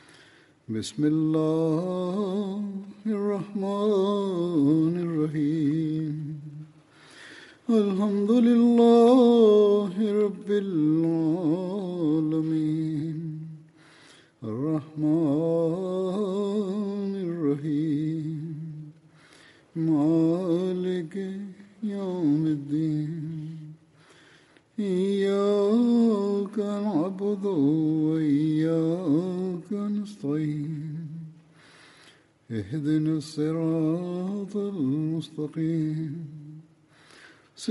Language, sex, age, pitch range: Swahili, male, 60-79, 155-195 Hz